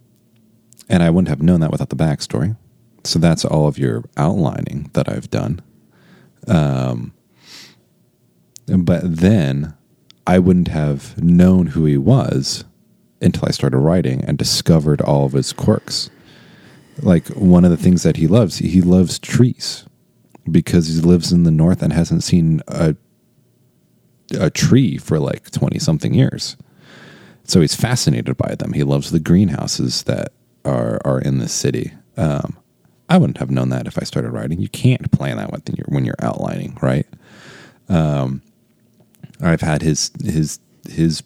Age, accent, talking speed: 30-49, American, 155 wpm